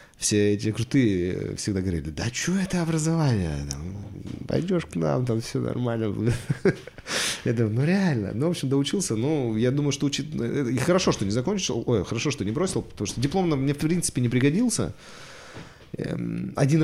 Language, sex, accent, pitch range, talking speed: Russian, male, native, 105-145 Hz, 175 wpm